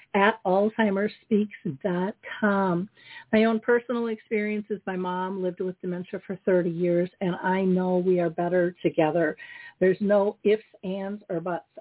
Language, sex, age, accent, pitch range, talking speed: English, female, 50-69, American, 195-235 Hz, 140 wpm